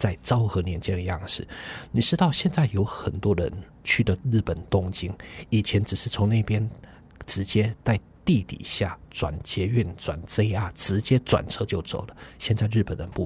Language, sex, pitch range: Chinese, male, 90-120 Hz